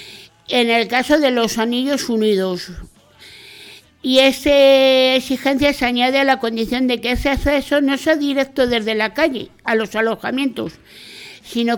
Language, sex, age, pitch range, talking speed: Spanish, female, 50-69, 220-280 Hz, 150 wpm